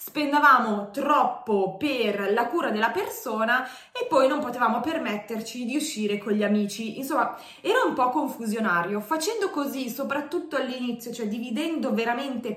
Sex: female